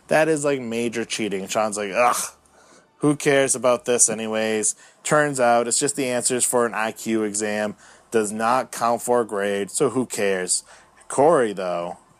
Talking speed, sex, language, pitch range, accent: 165 wpm, male, English, 110-150 Hz, American